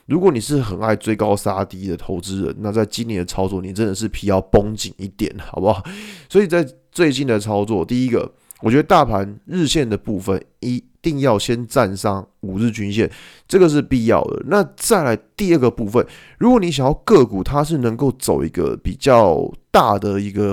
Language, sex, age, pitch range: Chinese, male, 20-39, 100-135 Hz